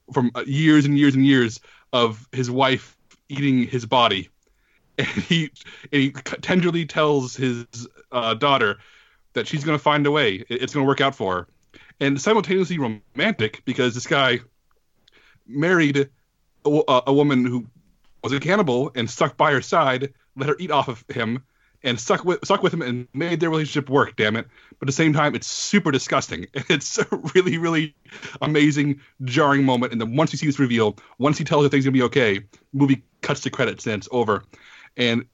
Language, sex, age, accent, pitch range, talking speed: English, male, 30-49, American, 120-150 Hz, 190 wpm